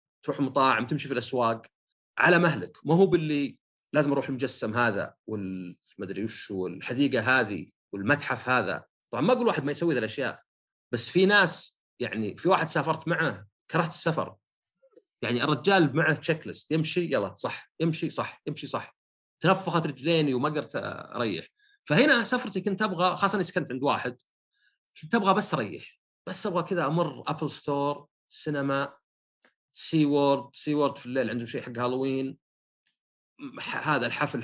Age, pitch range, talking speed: 40-59, 130-175 Hz, 155 wpm